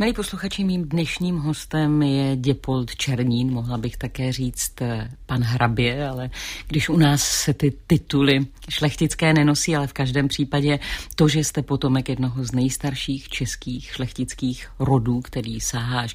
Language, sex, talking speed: Czech, female, 150 wpm